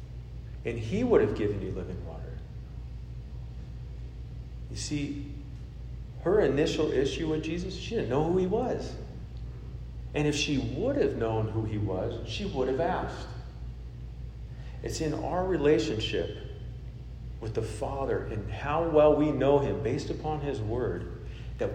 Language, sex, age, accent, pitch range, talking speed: English, male, 40-59, American, 105-140 Hz, 145 wpm